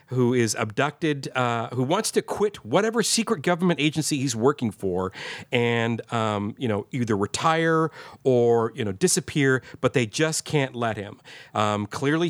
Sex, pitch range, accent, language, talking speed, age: male, 115-145 Hz, American, English, 160 wpm, 40-59